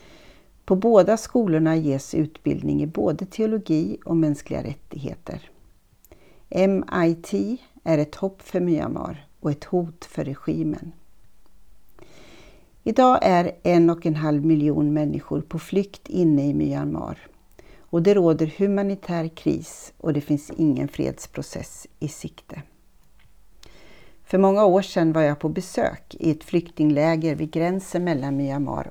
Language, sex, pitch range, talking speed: Swedish, female, 150-185 Hz, 130 wpm